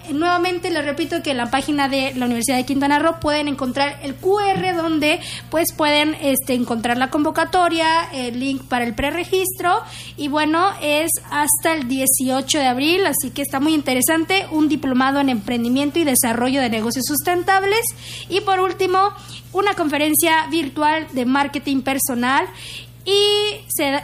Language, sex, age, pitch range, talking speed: Spanish, female, 20-39, 265-335 Hz, 150 wpm